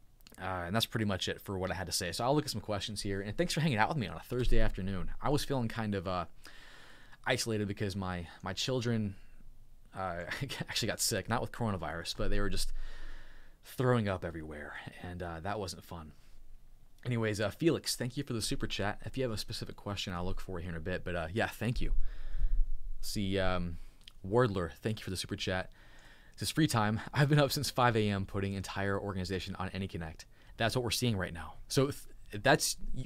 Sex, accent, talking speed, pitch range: male, American, 215 wpm, 95-120 Hz